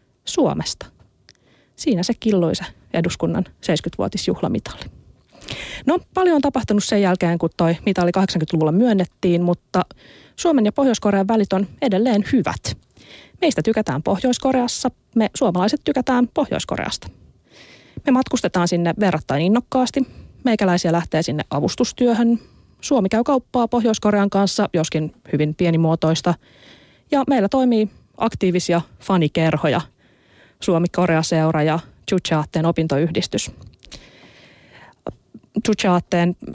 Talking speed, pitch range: 95 wpm, 160-210 Hz